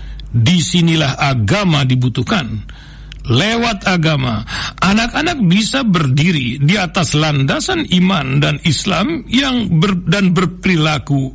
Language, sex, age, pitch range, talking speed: Indonesian, male, 60-79, 150-205 Hz, 95 wpm